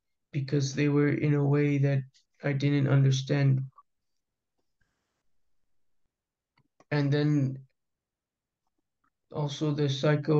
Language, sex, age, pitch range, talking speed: English, male, 20-39, 135-145 Hz, 85 wpm